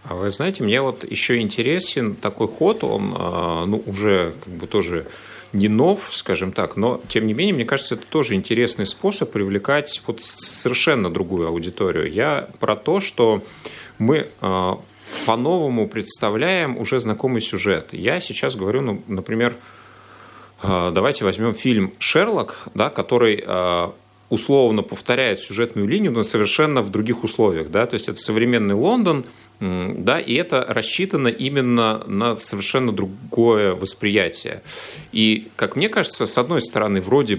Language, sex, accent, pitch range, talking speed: Russian, male, native, 95-115 Hz, 140 wpm